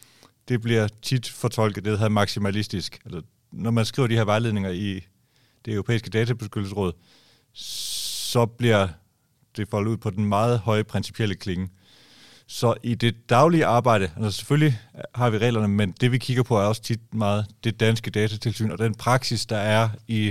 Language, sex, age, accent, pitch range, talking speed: Danish, male, 30-49, native, 105-120 Hz, 170 wpm